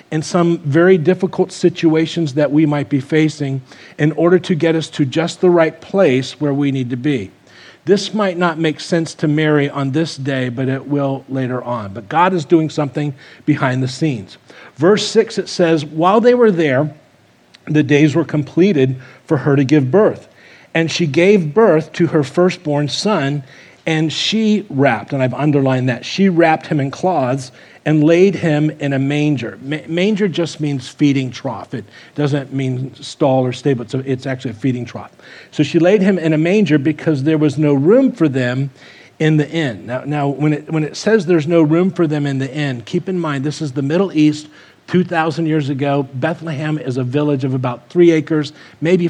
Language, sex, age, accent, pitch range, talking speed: English, male, 40-59, American, 140-170 Hz, 195 wpm